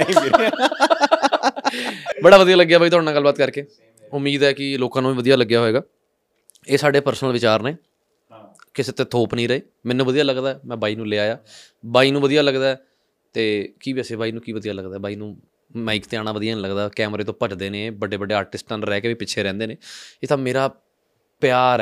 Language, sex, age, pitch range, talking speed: Punjabi, male, 20-39, 120-160 Hz, 200 wpm